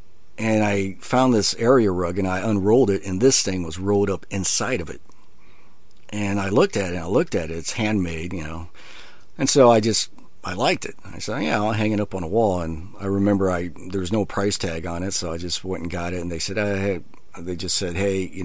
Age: 40-59